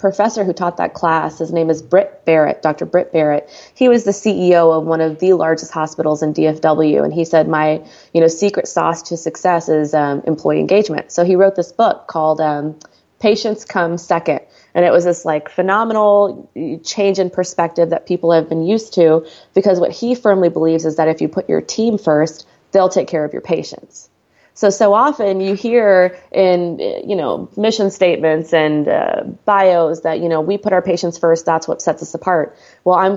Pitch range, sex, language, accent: 160-185 Hz, female, English, American